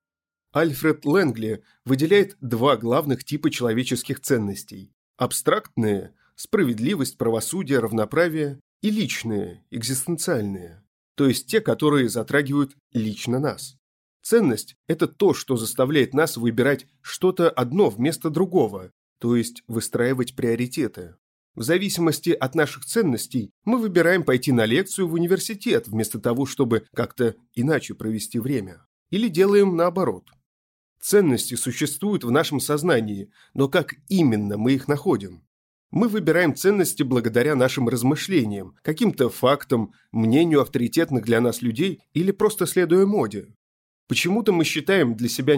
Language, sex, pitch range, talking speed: Russian, male, 115-160 Hz, 120 wpm